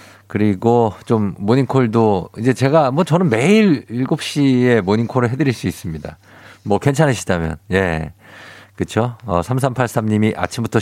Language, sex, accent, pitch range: Korean, male, native, 95-135 Hz